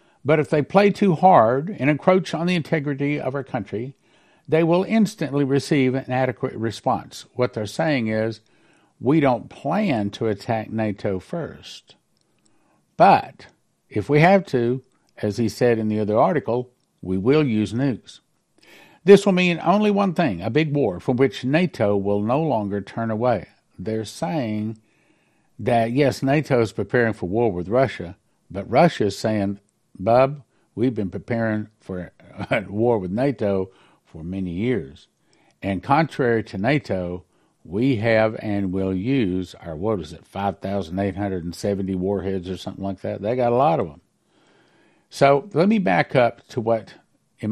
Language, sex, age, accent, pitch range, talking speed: English, male, 60-79, American, 100-135 Hz, 160 wpm